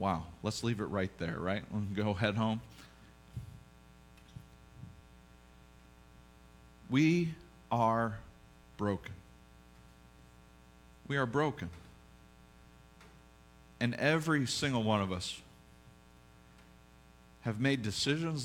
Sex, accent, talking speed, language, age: male, American, 90 wpm, English, 40-59